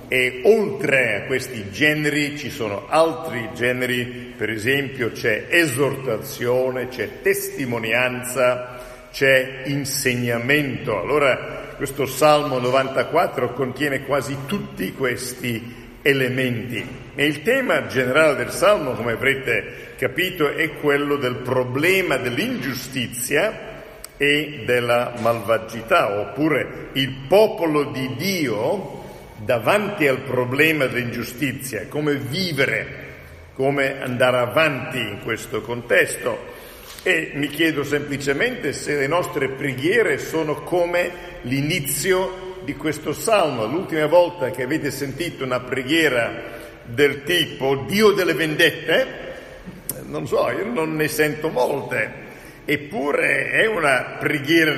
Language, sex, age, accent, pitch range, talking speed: Italian, male, 50-69, native, 125-155 Hz, 105 wpm